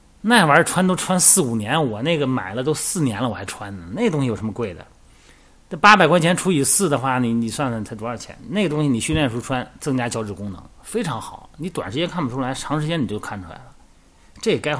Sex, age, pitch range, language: male, 30-49, 95-150 Hz, Chinese